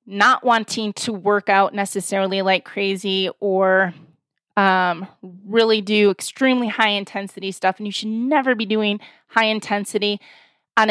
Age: 20-39